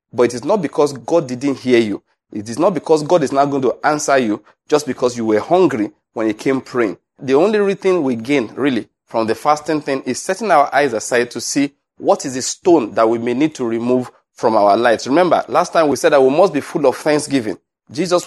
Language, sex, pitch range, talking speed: English, male, 120-150 Hz, 235 wpm